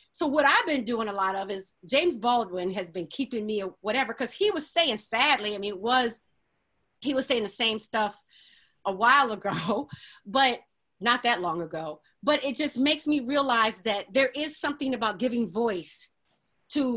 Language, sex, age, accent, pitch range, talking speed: English, female, 30-49, American, 225-280 Hz, 185 wpm